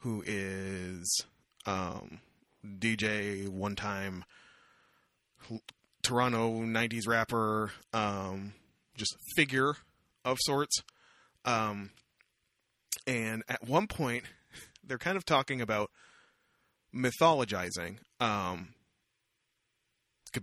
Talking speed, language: 75 wpm, English